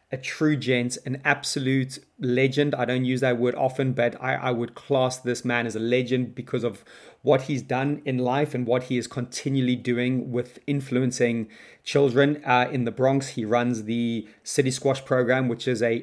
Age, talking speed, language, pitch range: 30-49, 190 wpm, English, 120-135 Hz